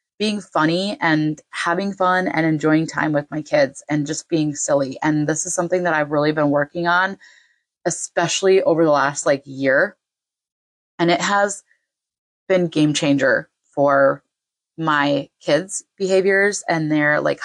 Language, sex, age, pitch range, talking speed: English, female, 20-39, 150-195 Hz, 150 wpm